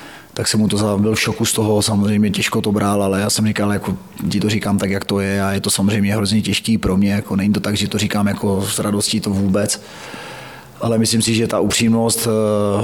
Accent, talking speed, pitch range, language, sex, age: native, 235 wpm, 100-110 Hz, Czech, male, 30-49